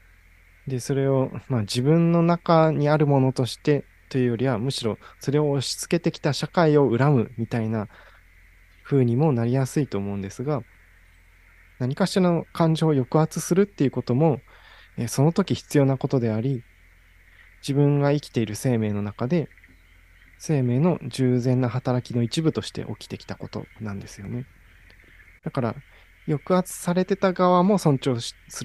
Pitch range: 100-145 Hz